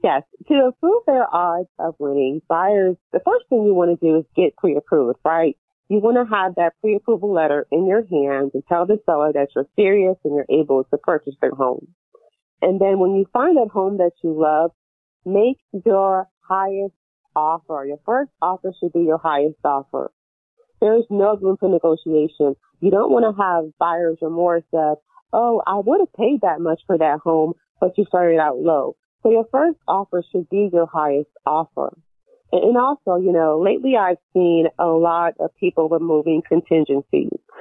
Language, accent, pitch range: English, American, 160-205 Hz